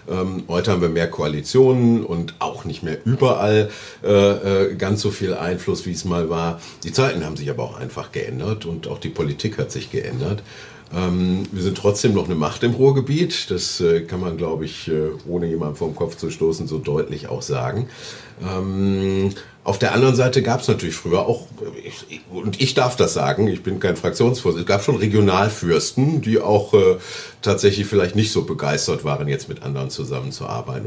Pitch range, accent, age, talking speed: 95-125 Hz, German, 50-69, 190 wpm